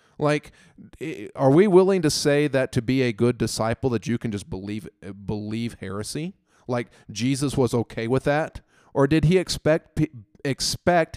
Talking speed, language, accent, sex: 160 wpm, English, American, male